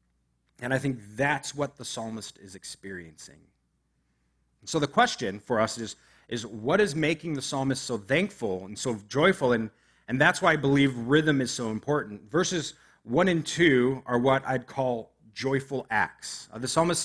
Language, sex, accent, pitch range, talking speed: English, male, American, 125-170 Hz, 170 wpm